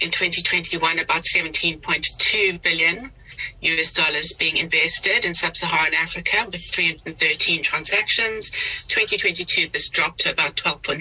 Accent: British